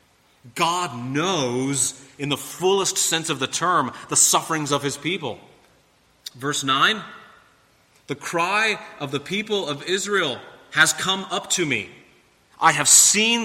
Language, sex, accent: English, male, American